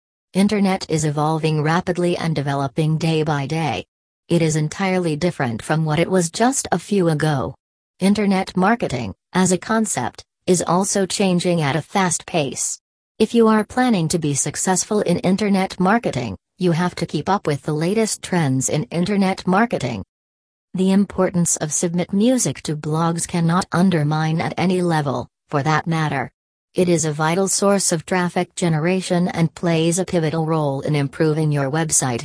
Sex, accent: female, American